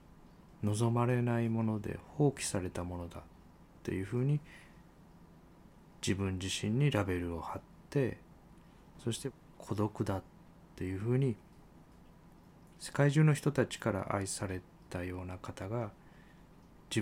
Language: Japanese